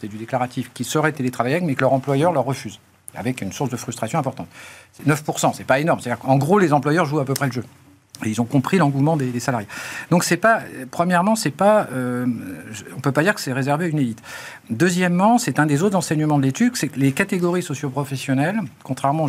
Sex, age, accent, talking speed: male, 50-69, French, 225 wpm